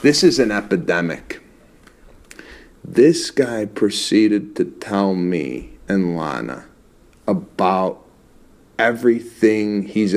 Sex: male